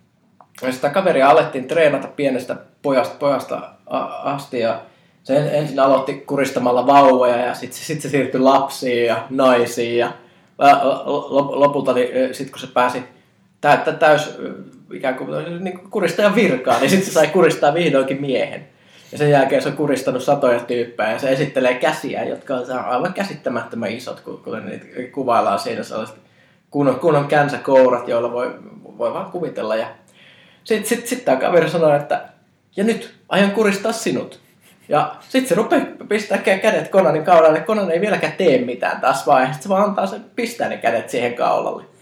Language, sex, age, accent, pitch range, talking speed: Finnish, male, 20-39, native, 130-195 Hz, 155 wpm